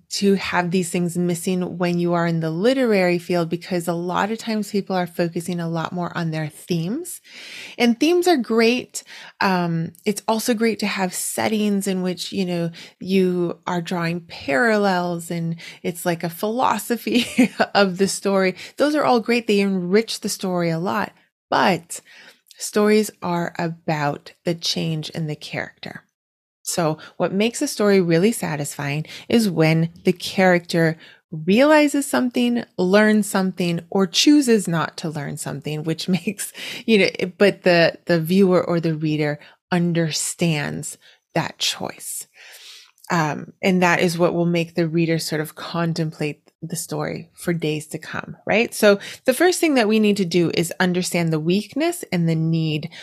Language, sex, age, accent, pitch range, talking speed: English, female, 20-39, American, 165-210 Hz, 160 wpm